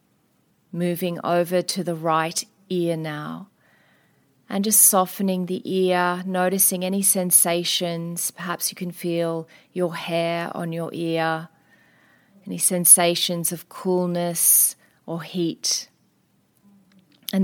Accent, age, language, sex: Australian, 30-49, English, female